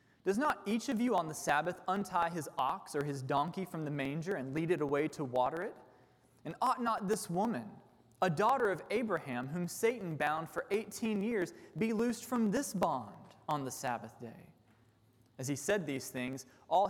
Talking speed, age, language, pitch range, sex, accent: 190 wpm, 20-39, English, 145-200 Hz, male, American